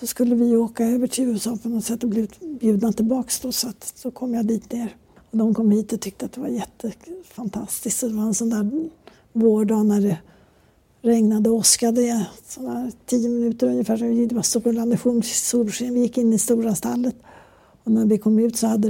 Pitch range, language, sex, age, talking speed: 215-245 Hz, Swedish, female, 60-79, 195 wpm